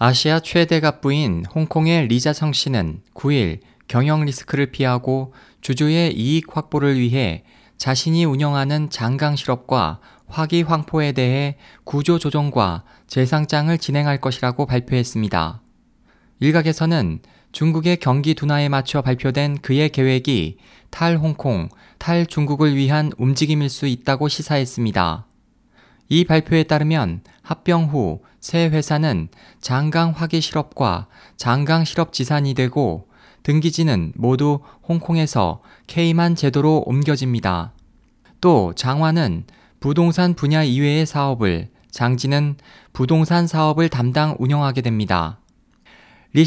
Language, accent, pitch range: Korean, native, 125-160 Hz